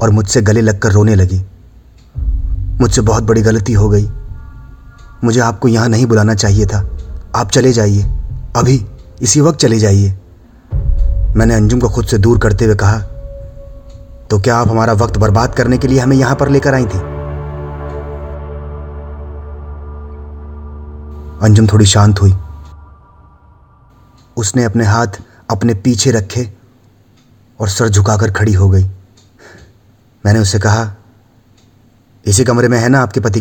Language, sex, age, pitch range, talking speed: Hindi, male, 30-49, 100-120 Hz, 140 wpm